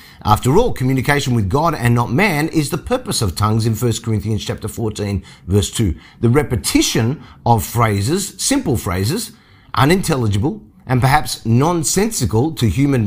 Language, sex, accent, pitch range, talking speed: English, male, Australian, 100-130 Hz, 145 wpm